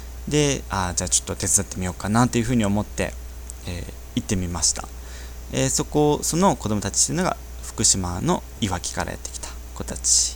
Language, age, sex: Japanese, 20-39, male